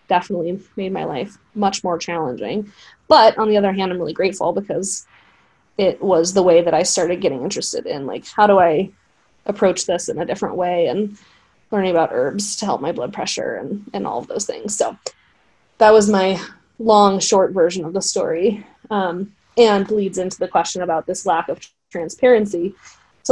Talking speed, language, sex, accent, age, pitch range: 190 wpm, English, female, American, 20-39, 180-215 Hz